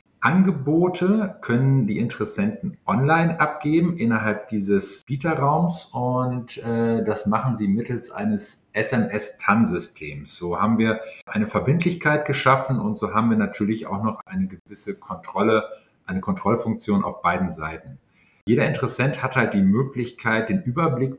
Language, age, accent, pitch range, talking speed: German, 50-69, German, 105-160 Hz, 130 wpm